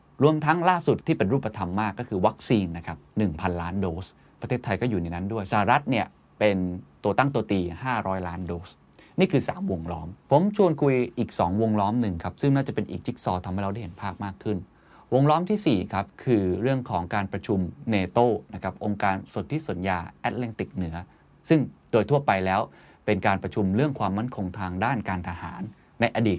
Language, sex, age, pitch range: Thai, male, 20-39, 95-125 Hz